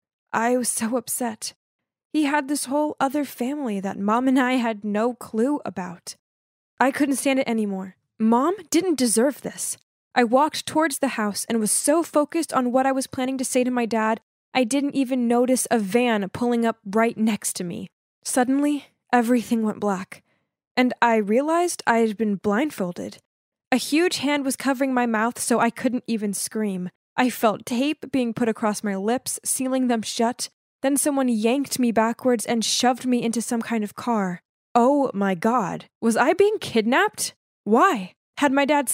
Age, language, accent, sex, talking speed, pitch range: 10-29, English, American, female, 180 wpm, 225-275 Hz